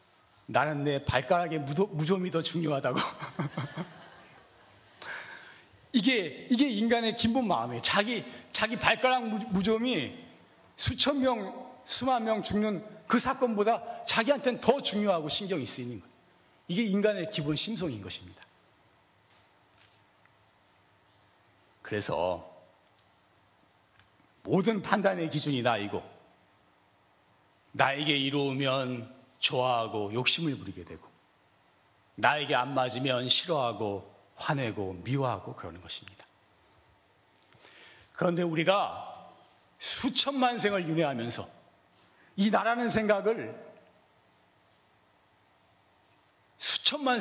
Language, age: Korean, 40-59